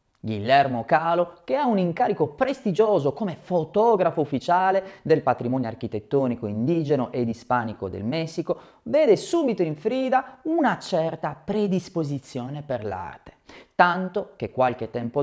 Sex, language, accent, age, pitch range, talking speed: male, Italian, native, 30-49, 135-225 Hz, 120 wpm